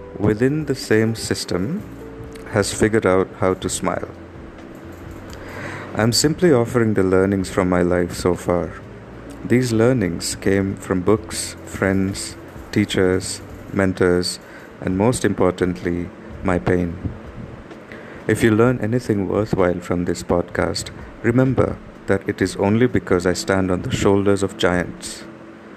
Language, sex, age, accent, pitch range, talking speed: English, male, 50-69, Indian, 90-110 Hz, 130 wpm